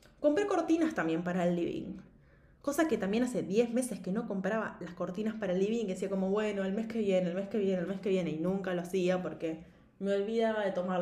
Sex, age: female, 20-39